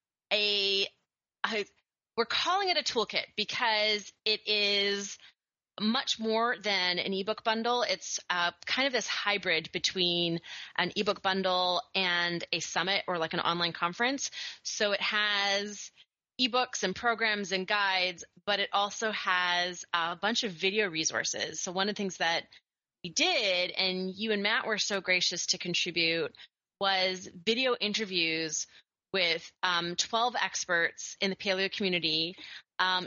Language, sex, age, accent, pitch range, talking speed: English, female, 20-39, American, 180-225 Hz, 145 wpm